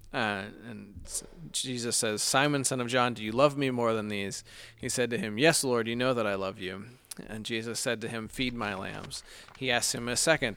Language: English